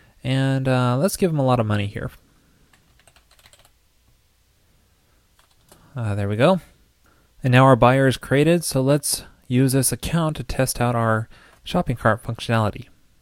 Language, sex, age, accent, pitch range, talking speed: English, male, 20-39, American, 115-140 Hz, 145 wpm